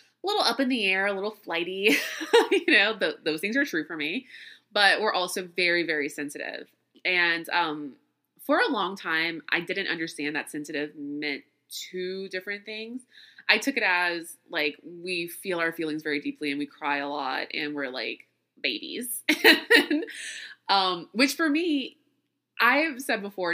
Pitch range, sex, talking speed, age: 165-250 Hz, female, 170 wpm, 20-39